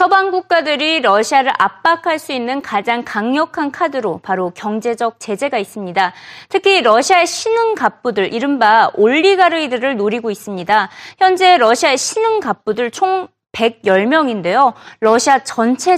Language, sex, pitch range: Korean, female, 220-355 Hz